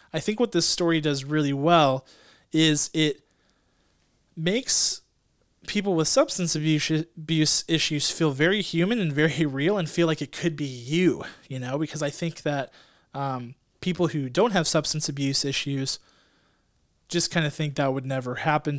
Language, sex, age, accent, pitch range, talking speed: English, male, 20-39, American, 140-170 Hz, 165 wpm